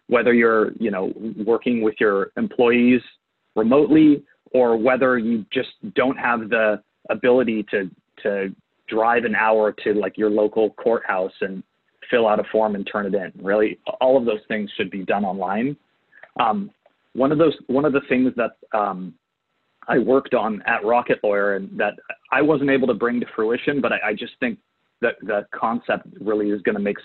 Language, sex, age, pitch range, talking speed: English, male, 30-49, 105-130 Hz, 180 wpm